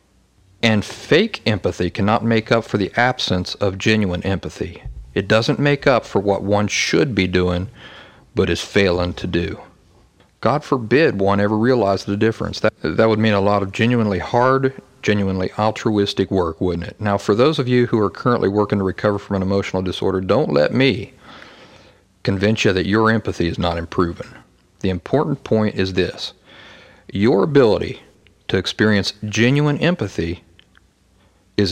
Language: English